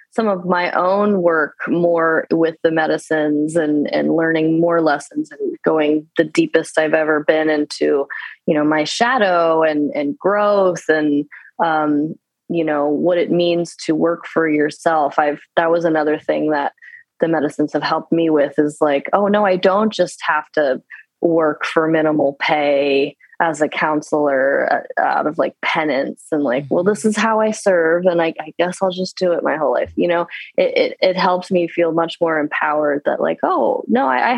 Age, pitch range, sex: 20-39, 150-180 Hz, female